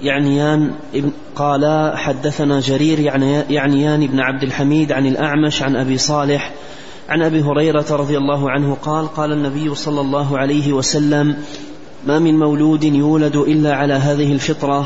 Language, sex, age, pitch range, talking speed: Arabic, male, 30-49, 140-150 Hz, 140 wpm